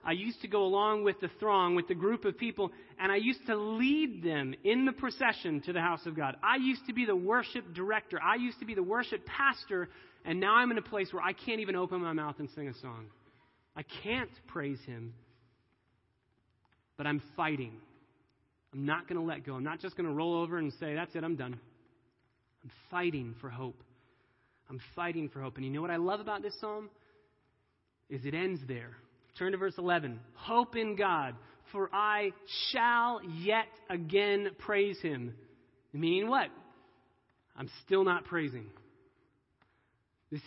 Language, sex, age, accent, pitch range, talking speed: English, male, 30-49, American, 135-210 Hz, 185 wpm